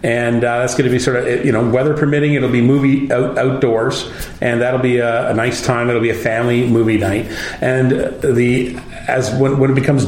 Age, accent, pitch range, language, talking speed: 40-59, American, 115-135 Hz, English, 220 wpm